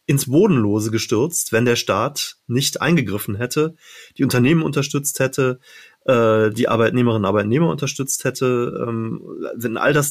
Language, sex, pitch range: German, male, 120-145 Hz